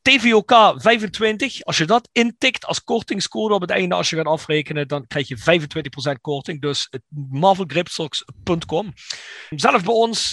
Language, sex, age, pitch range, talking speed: Dutch, male, 40-59, 150-195 Hz, 145 wpm